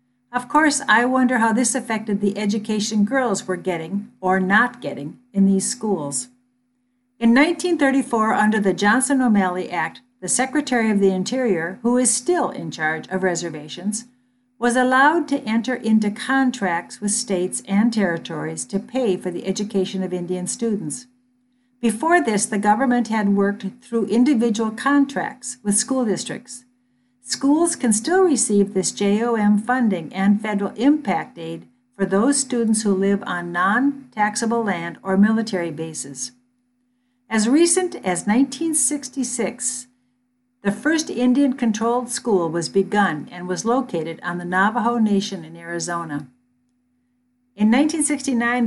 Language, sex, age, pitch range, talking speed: English, female, 60-79, 190-250 Hz, 135 wpm